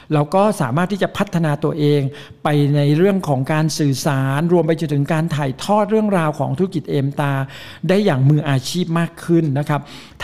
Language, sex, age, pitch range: Thai, male, 60-79, 145-180 Hz